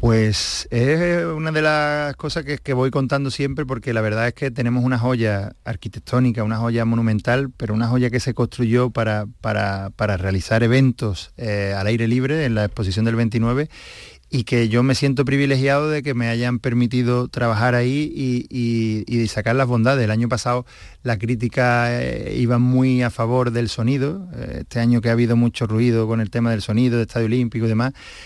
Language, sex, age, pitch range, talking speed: Spanish, male, 30-49, 115-130 Hz, 195 wpm